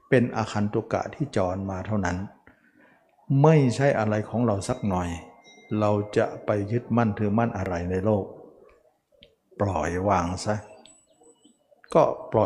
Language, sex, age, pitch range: Thai, male, 60-79, 100-120 Hz